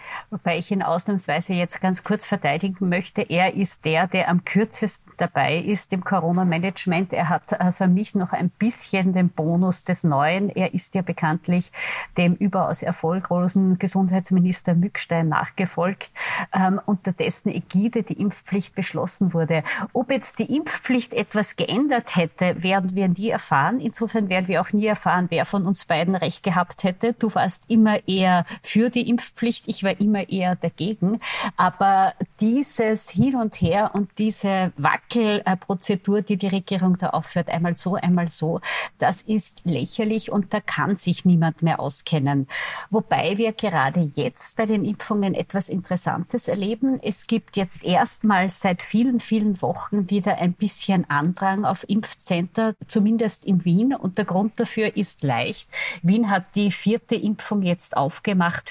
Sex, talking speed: female, 150 wpm